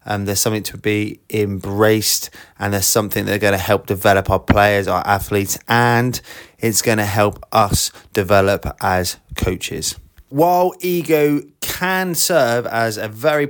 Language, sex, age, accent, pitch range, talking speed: English, male, 20-39, British, 100-135 Hz, 150 wpm